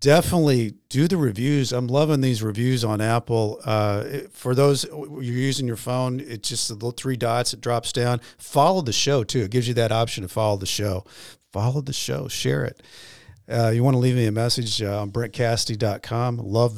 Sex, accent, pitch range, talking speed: male, American, 105-130 Hz, 200 wpm